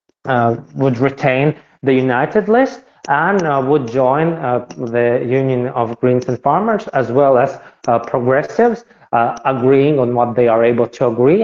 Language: English